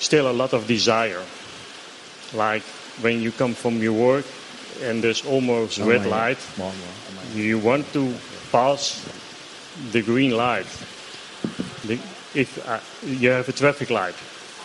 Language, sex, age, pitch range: Thai, male, 40-59, 110-130 Hz